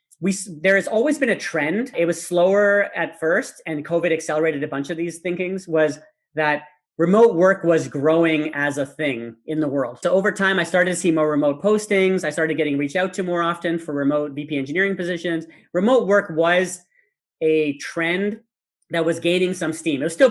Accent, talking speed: American, 200 wpm